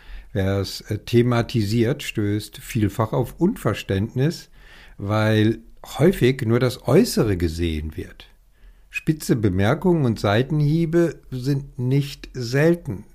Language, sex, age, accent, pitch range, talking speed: German, male, 50-69, German, 100-140 Hz, 95 wpm